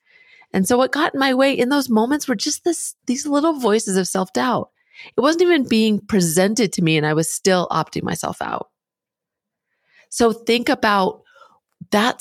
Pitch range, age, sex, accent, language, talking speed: 170-220 Hz, 30-49, female, American, English, 175 wpm